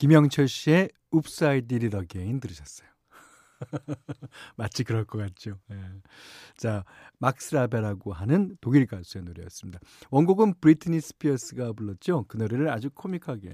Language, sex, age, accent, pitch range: Korean, male, 40-59, native, 110-160 Hz